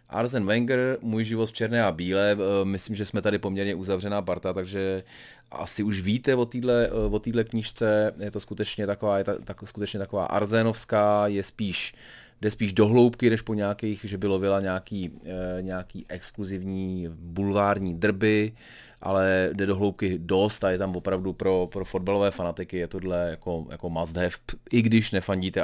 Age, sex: 30-49, male